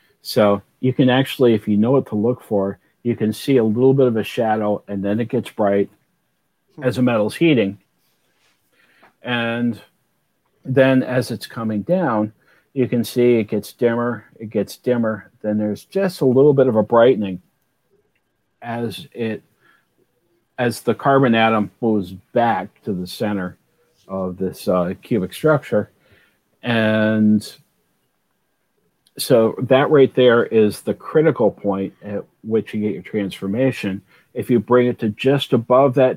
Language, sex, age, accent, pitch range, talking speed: English, male, 50-69, American, 105-125 Hz, 155 wpm